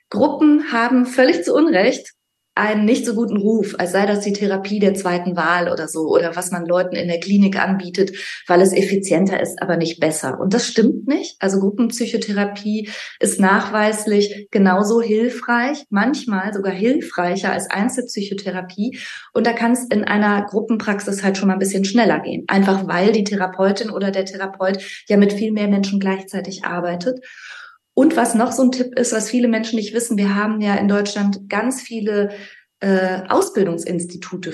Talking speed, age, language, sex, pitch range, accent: 170 wpm, 30-49, German, female, 185-230 Hz, German